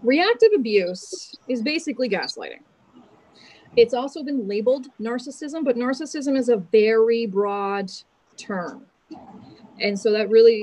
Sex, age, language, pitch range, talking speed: female, 30-49, English, 205-255 Hz, 120 wpm